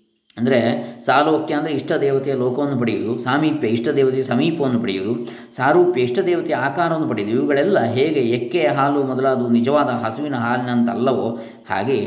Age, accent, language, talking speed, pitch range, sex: 20-39, native, Kannada, 135 wpm, 105-130 Hz, male